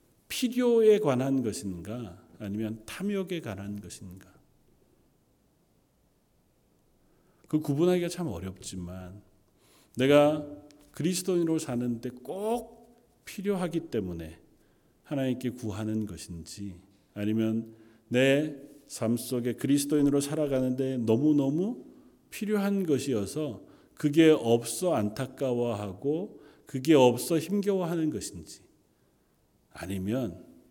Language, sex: Korean, male